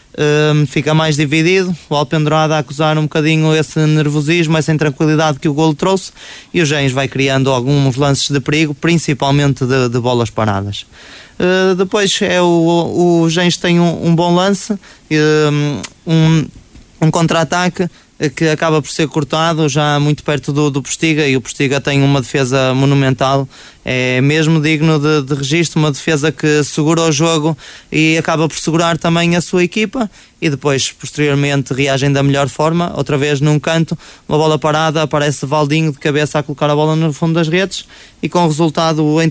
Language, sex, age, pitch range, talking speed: Portuguese, male, 20-39, 145-170 Hz, 175 wpm